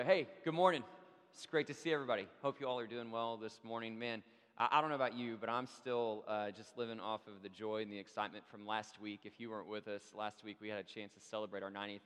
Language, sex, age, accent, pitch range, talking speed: English, male, 20-39, American, 105-125 Hz, 270 wpm